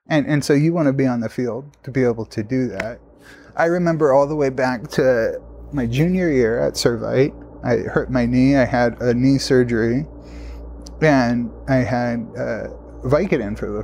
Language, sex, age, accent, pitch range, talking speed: English, male, 30-49, American, 120-145 Hz, 190 wpm